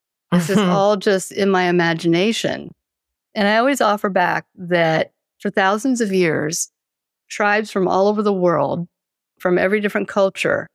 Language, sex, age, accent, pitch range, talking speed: English, female, 50-69, American, 160-195 Hz, 150 wpm